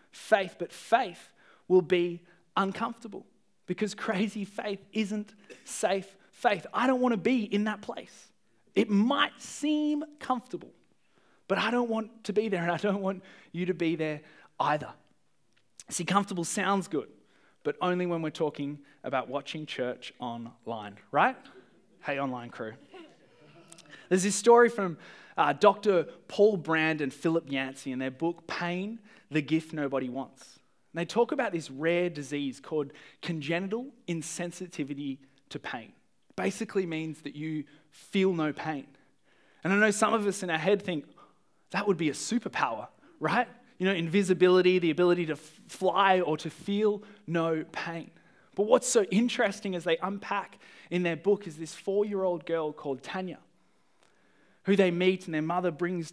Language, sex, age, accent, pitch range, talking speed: English, male, 20-39, Australian, 155-205 Hz, 160 wpm